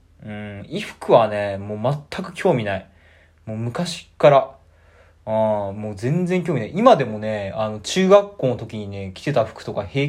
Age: 20-39